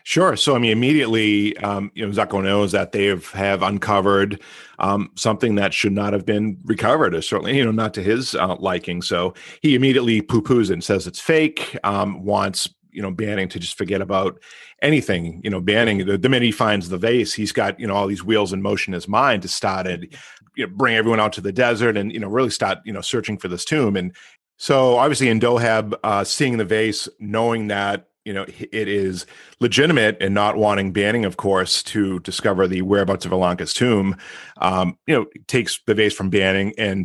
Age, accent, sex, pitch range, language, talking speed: 40-59, American, male, 95-110 Hz, English, 215 wpm